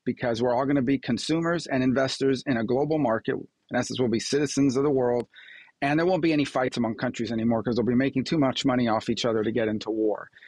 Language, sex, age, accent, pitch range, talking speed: English, male, 40-59, American, 115-135 Hz, 245 wpm